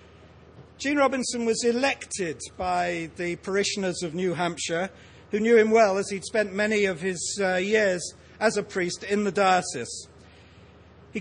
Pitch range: 170-210 Hz